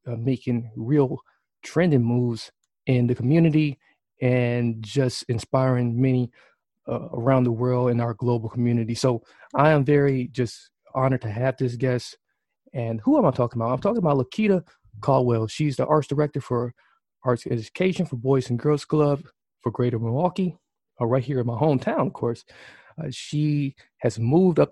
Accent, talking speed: American, 165 wpm